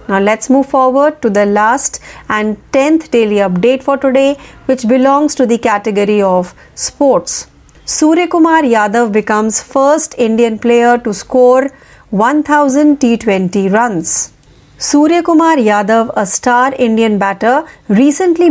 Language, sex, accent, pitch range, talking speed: Marathi, female, native, 215-280 Hz, 130 wpm